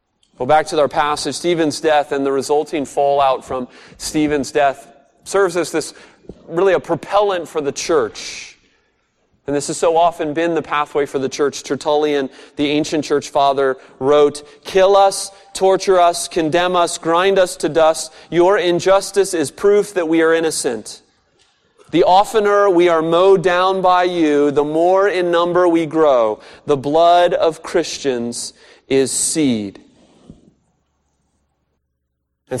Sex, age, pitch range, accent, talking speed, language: male, 30-49, 135-170 Hz, American, 145 wpm, English